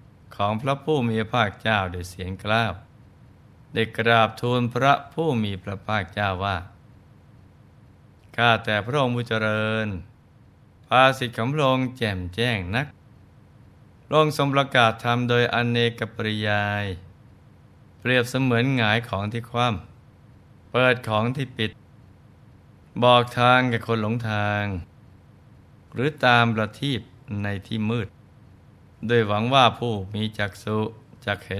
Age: 20-39